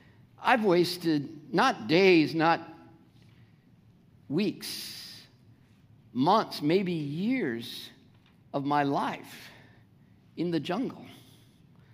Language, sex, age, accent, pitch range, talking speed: English, male, 50-69, American, 145-205 Hz, 75 wpm